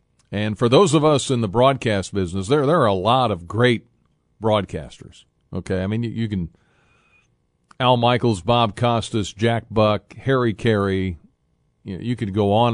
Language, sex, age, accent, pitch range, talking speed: English, male, 40-59, American, 95-120 Hz, 180 wpm